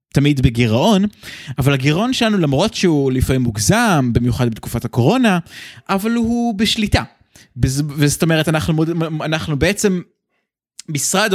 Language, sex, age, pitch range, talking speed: Hebrew, male, 20-39, 120-170 Hz, 110 wpm